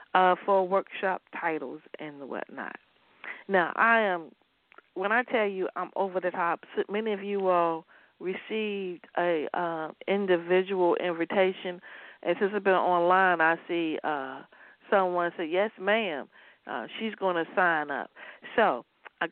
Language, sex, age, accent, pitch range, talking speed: English, female, 40-59, American, 165-210 Hz, 140 wpm